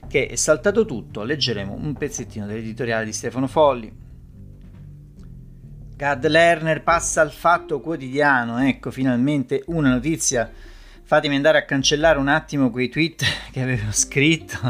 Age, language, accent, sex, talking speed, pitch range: 40-59, Italian, native, male, 130 wpm, 115-160 Hz